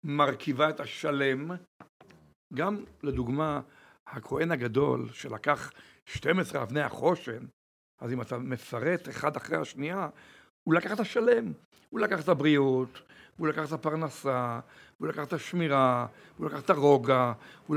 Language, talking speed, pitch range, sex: Hebrew, 130 wpm, 135-175 Hz, male